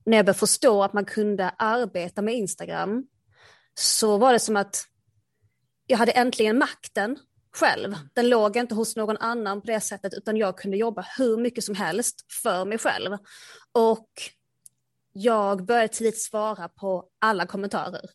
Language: Swedish